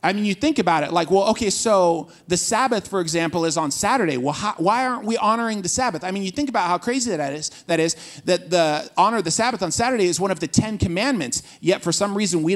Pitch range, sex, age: 170-215 Hz, male, 30-49